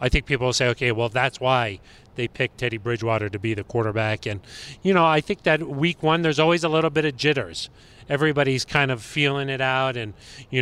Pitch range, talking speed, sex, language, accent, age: 120-145 Hz, 225 wpm, male, English, American, 30-49